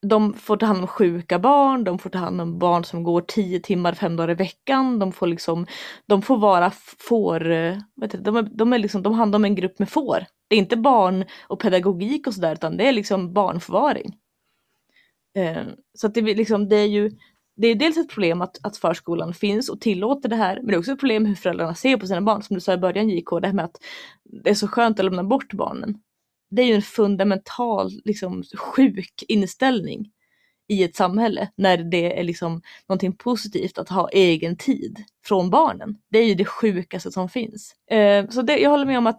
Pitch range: 185-225 Hz